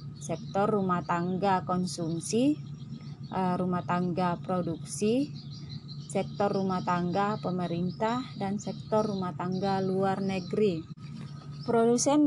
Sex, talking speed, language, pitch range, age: female, 90 wpm, Indonesian, 175-215 Hz, 20-39